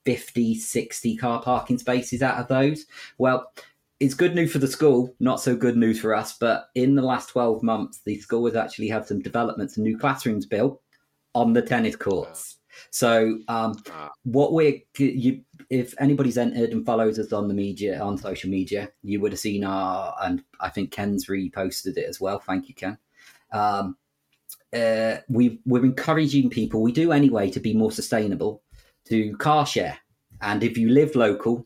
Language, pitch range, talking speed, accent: English, 100-130 Hz, 180 wpm, British